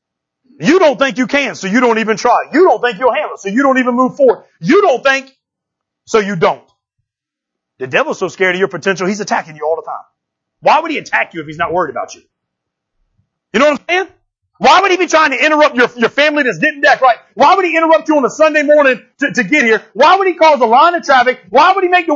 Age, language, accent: 40-59, English, American